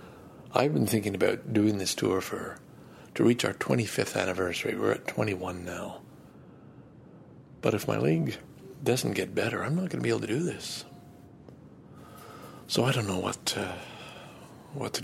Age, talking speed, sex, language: 60-79, 165 wpm, male, English